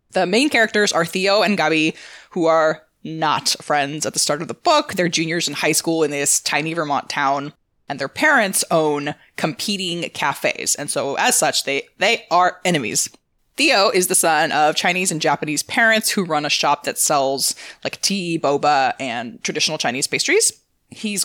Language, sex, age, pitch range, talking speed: English, female, 20-39, 145-205 Hz, 180 wpm